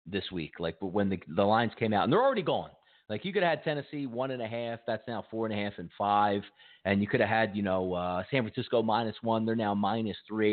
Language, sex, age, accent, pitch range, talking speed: English, male, 30-49, American, 110-165 Hz, 275 wpm